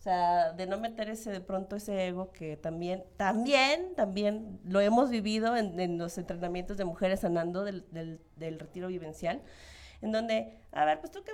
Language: Spanish